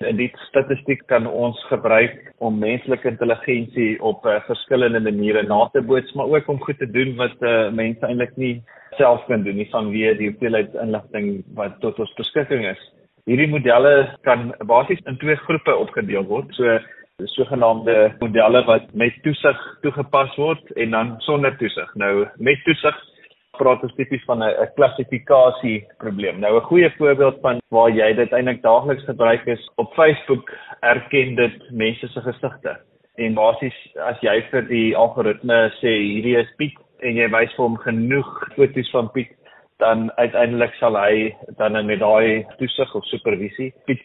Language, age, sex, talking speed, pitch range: Swedish, 30-49, male, 165 wpm, 115-135 Hz